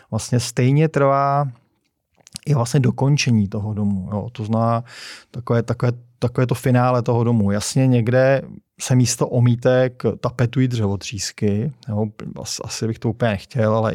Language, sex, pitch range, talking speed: Czech, male, 105-125 Hz, 140 wpm